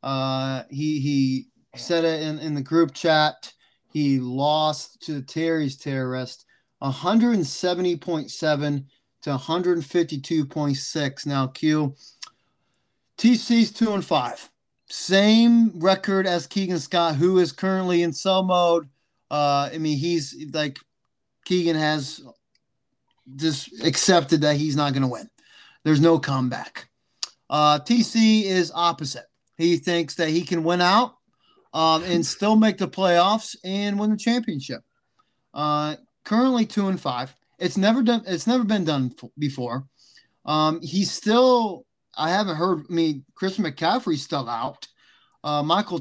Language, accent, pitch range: English, American, 145-195 Hz